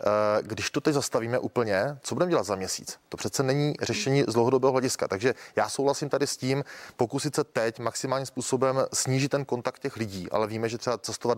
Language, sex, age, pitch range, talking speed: Czech, male, 30-49, 110-130 Hz, 195 wpm